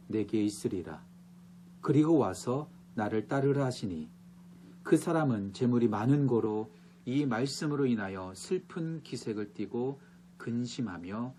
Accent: native